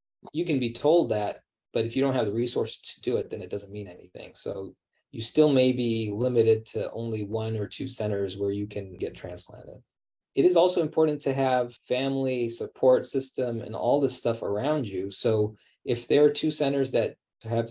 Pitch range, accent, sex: 105-130 Hz, American, male